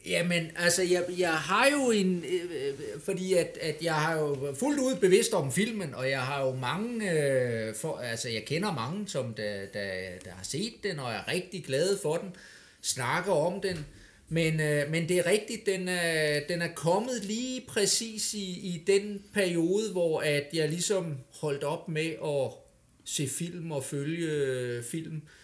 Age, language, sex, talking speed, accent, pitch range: 30-49, Danish, male, 180 wpm, native, 130-185 Hz